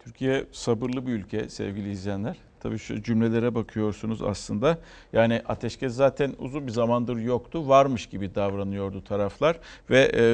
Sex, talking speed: male, 140 wpm